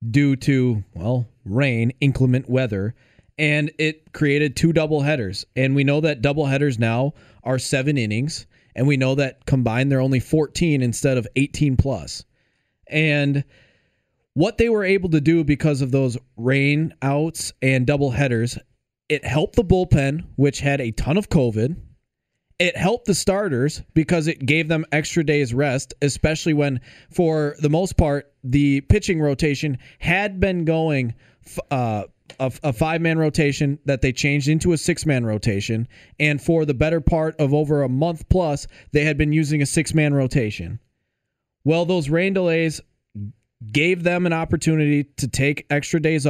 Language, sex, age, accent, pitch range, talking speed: English, male, 20-39, American, 130-155 Hz, 160 wpm